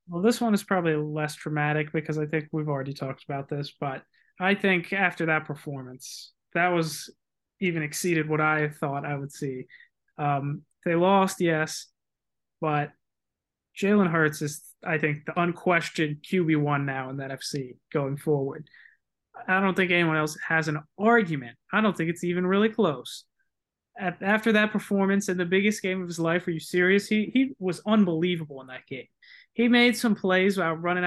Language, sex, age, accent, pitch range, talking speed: English, male, 20-39, American, 155-185 Hz, 180 wpm